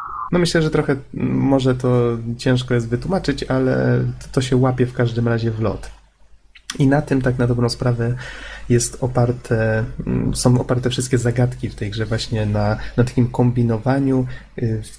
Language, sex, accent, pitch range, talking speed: Polish, male, native, 115-135 Hz, 150 wpm